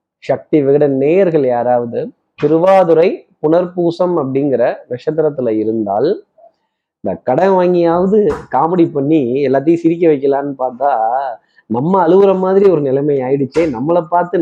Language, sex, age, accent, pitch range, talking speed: Tamil, male, 30-49, native, 130-170 Hz, 110 wpm